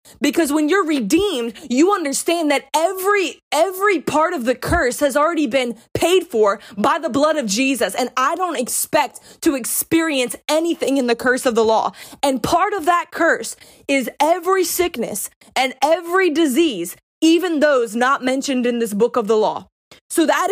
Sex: female